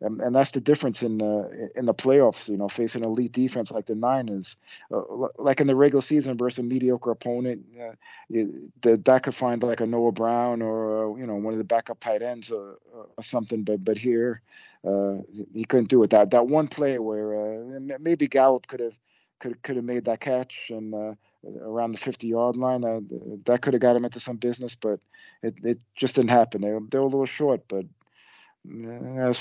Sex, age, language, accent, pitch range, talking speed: male, 40-59, English, American, 110-130 Hz, 210 wpm